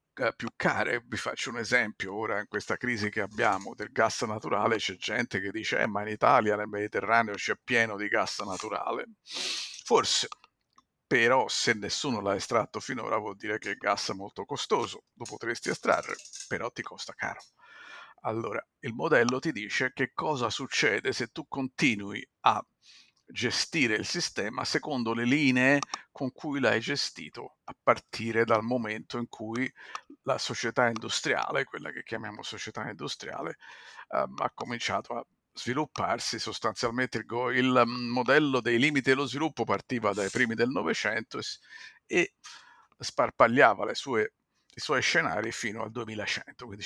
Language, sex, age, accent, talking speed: Italian, male, 50-69, native, 150 wpm